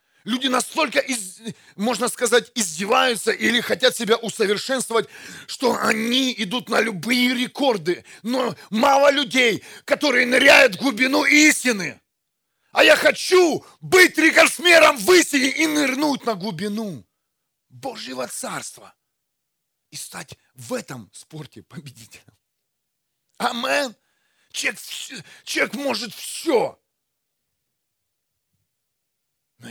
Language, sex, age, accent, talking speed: Russian, male, 40-59, native, 100 wpm